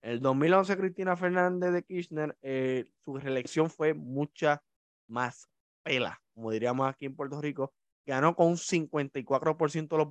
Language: Spanish